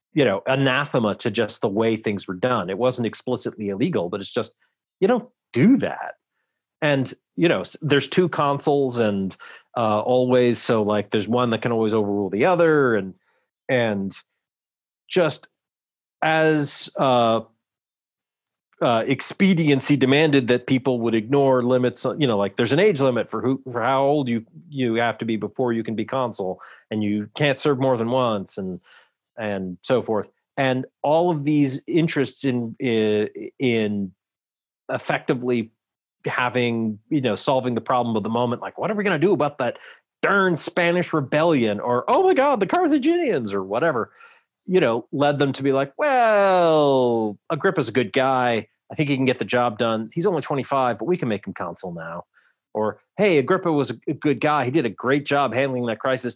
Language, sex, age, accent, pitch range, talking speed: English, male, 40-59, American, 115-145 Hz, 180 wpm